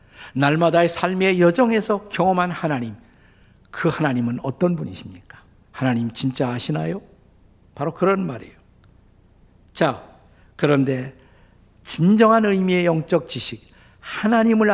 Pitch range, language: 115-175 Hz, Korean